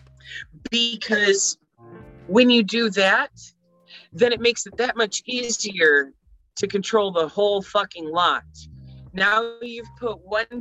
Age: 30-49